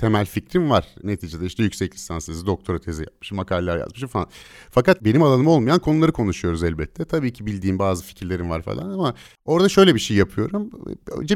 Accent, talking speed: native, 185 wpm